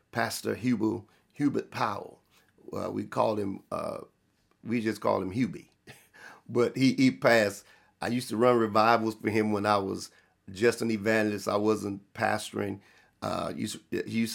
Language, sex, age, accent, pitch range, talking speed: English, male, 40-59, American, 105-125 Hz, 160 wpm